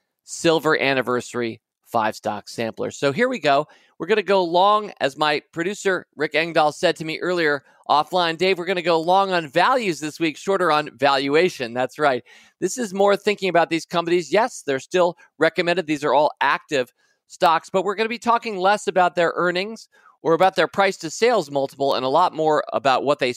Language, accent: English, American